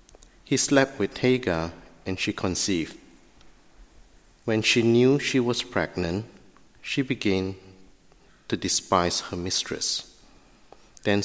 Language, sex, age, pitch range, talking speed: English, male, 50-69, 90-115 Hz, 105 wpm